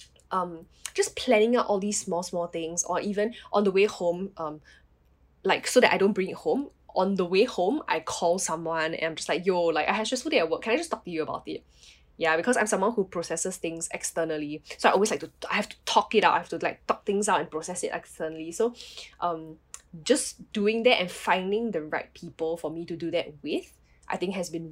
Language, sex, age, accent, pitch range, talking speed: English, female, 10-29, Malaysian, 165-225 Hz, 245 wpm